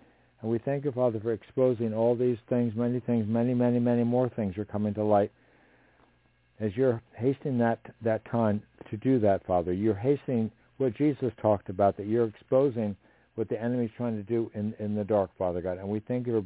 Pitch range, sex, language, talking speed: 105-125 Hz, male, English, 210 wpm